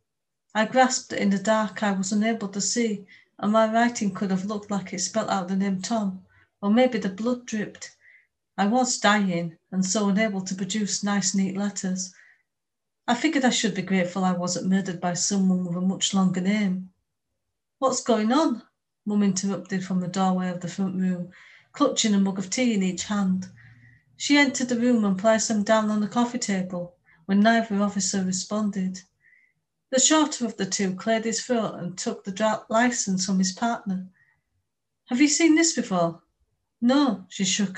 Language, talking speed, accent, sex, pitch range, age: English, 185 wpm, British, female, 185-230 Hz, 40-59